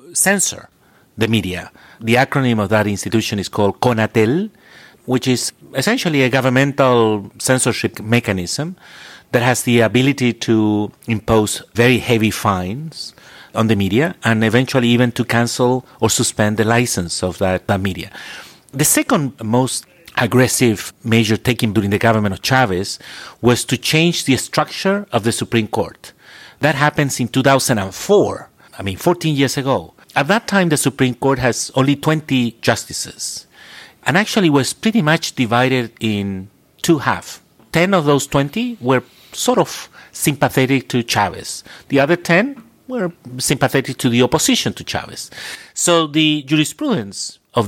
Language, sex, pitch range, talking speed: English, male, 110-145 Hz, 145 wpm